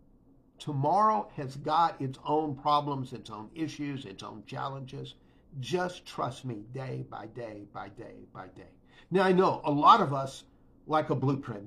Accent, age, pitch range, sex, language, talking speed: American, 50-69, 125-160 Hz, male, English, 165 wpm